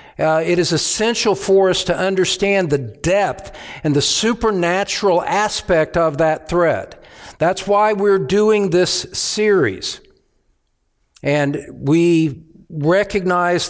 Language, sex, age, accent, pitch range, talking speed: English, male, 60-79, American, 130-175 Hz, 115 wpm